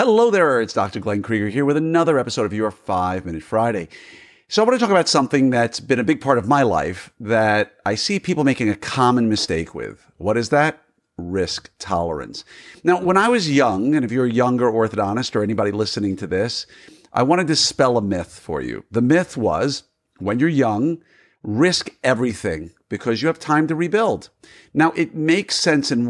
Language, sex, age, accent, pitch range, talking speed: English, male, 50-69, American, 110-155 Hz, 200 wpm